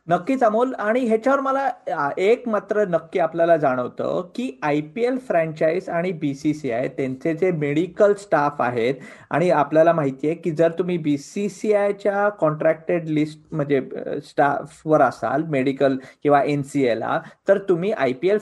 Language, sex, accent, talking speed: Marathi, male, native, 75 wpm